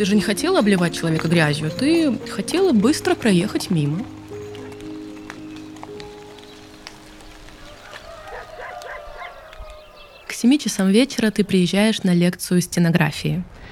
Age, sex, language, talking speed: 20-39, female, Russian, 90 wpm